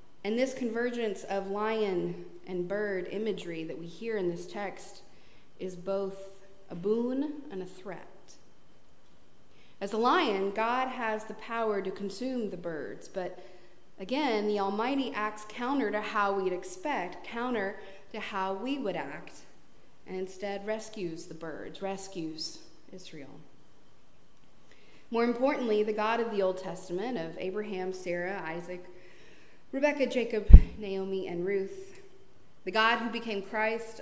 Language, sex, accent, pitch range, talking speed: English, female, American, 185-220 Hz, 135 wpm